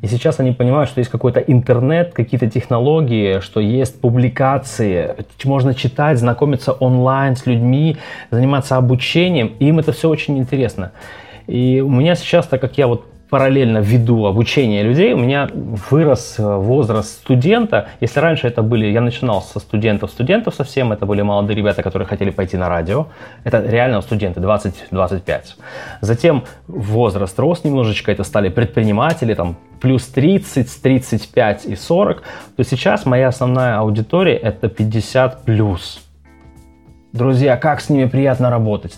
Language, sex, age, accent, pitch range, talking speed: Ukrainian, male, 20-39, native, 110-140 Hz, 140 wpm